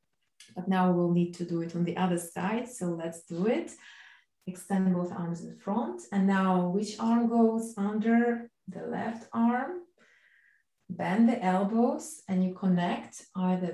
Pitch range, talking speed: 185-230 Hz, 155 wpm